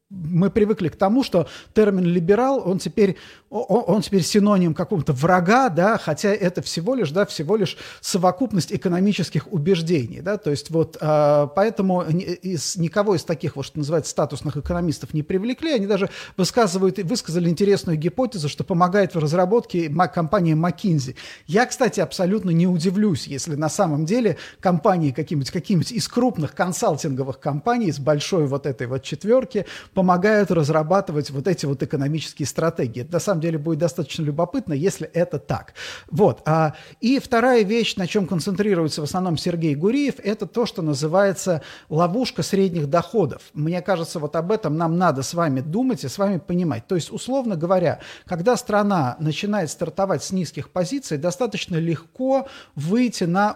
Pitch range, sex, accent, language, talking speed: 155-205 Hz, male, native, Russian, 155 wpm